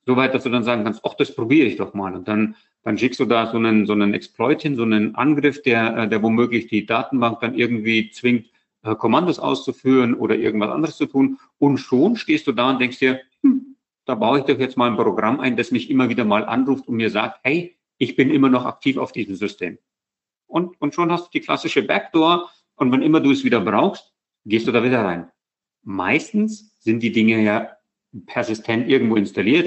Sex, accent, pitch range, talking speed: male, German, 115-150 Hz, 215 wpm